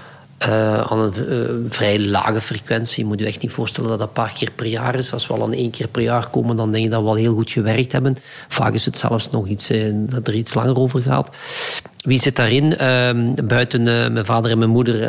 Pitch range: 115-140 Hz